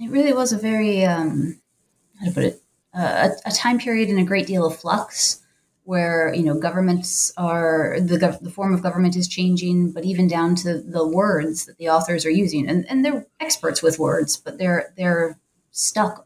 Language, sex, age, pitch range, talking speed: English, female, 30-49, 170-215 Hz, 200 wpm